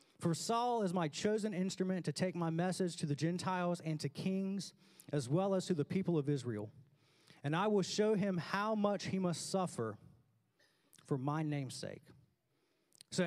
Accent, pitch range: American, 155-205 Hz